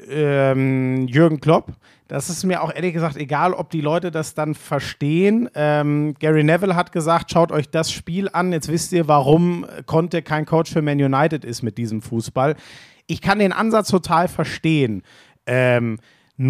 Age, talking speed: 40-59, 165 wpm